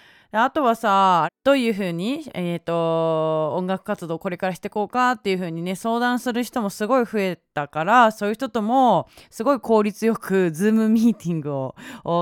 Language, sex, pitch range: Japanese, female, 170-235 Hz